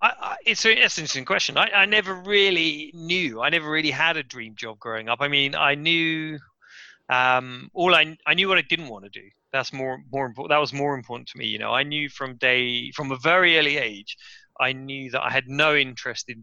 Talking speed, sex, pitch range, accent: 240 wpm, male, 115-145 Hz, British